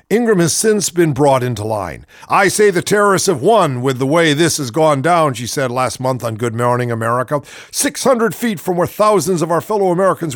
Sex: male